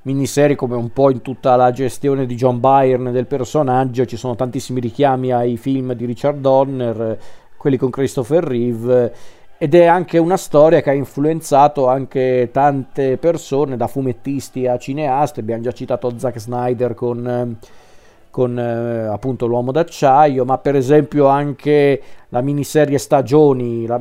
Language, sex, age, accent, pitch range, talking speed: Italian, male, 40-59, native, 125-145 Hz, 150 wpm